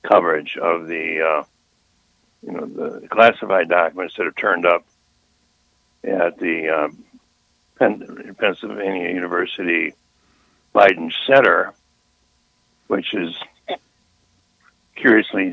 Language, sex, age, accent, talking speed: English, male, 60-79, American, 90 wpm